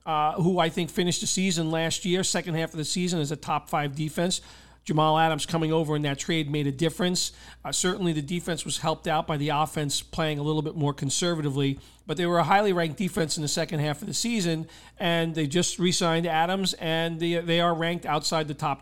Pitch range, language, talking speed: 160-185 Hz, English, 225 wpm